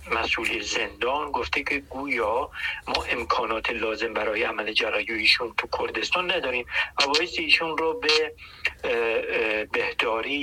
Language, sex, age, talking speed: English, male, 50-69, 110 wpm